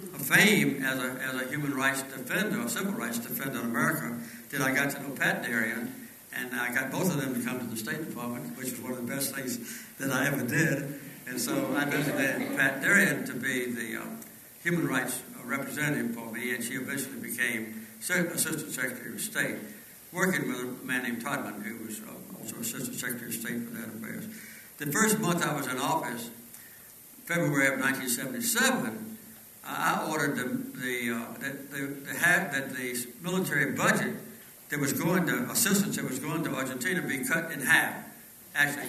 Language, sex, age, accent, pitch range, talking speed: English, male, 60-79, American, 125-175 Hz, 185 wpm